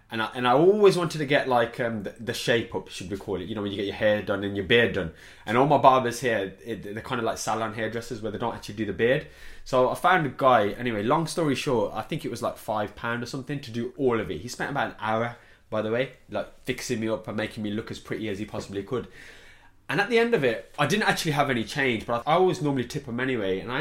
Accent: British